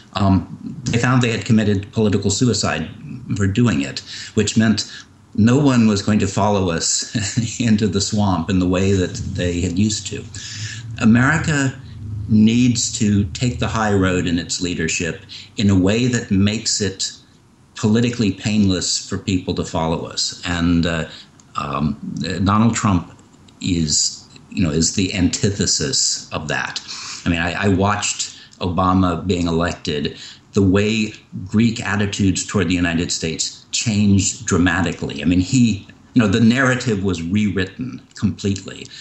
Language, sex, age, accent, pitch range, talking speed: English, male, 60-79, American, 95-115 Hz, 145 wpm